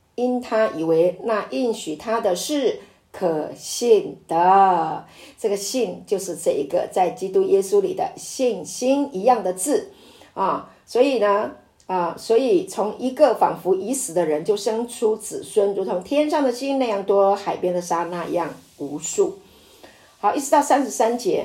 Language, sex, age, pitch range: Chinese, female, 50-69, 200-295 Hz